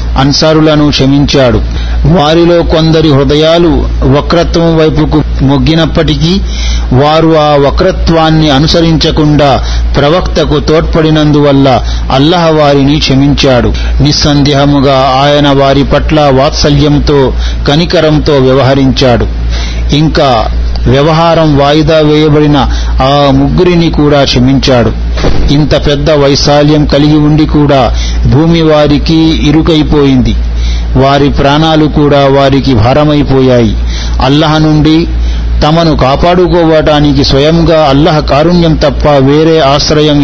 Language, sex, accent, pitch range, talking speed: Telugu, male, native, 135-155 Hz, 85 wpm